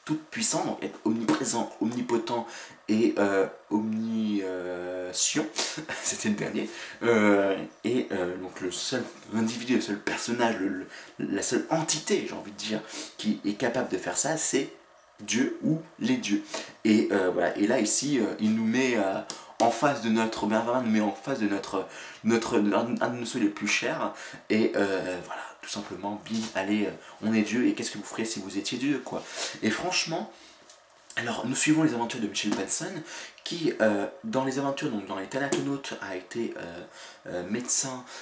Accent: French